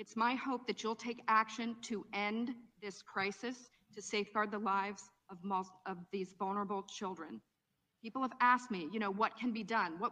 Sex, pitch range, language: female, 200-240 Hz, English